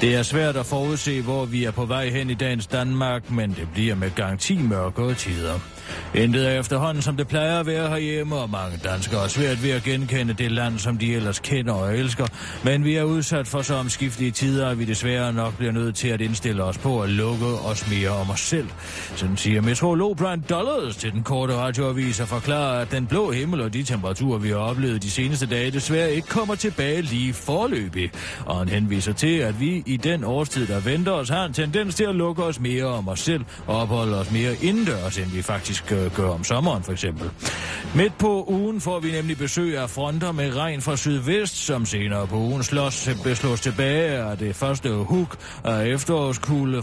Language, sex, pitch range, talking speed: Danish, male, 110-145 Hz, 210 wpm